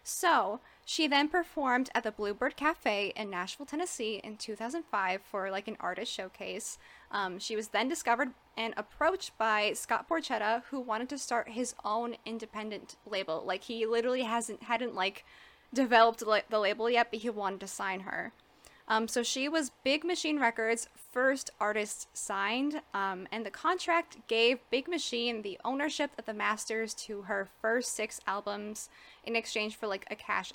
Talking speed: 165 wpm